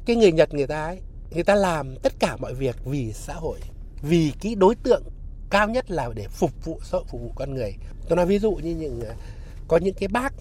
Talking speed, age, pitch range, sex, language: 240 wpm, 60-79, 130-200 Hz, male, Vietnamese